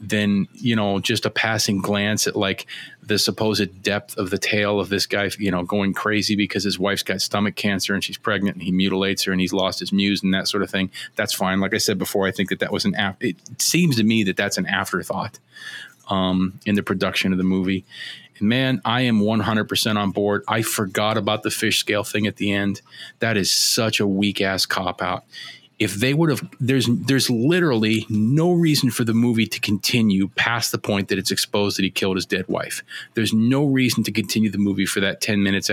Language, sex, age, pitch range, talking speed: English, male, 30-49, 95-110 Hz, 230 wpm